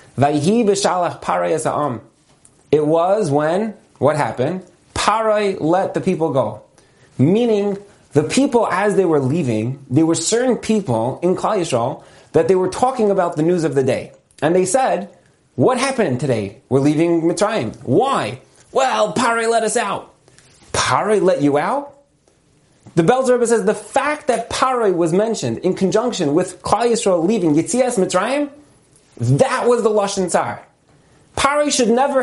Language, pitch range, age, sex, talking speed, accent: English, 160-235 Hz, 30-49, male, 145 wpm, American